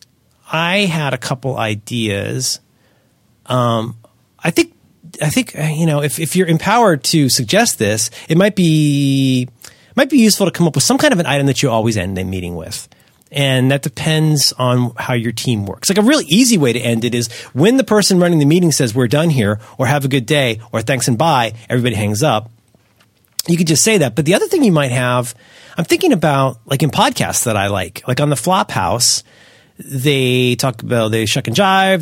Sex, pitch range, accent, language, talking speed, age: male, 115-170 Hz, American, English, 215 wpm, 30-49